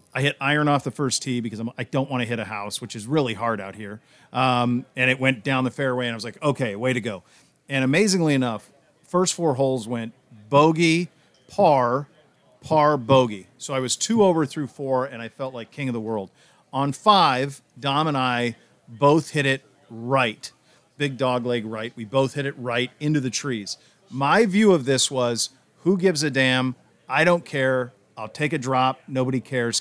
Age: 40-59